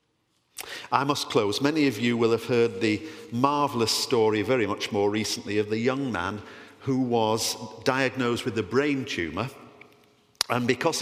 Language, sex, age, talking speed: English, male, 50-69, 160 wpm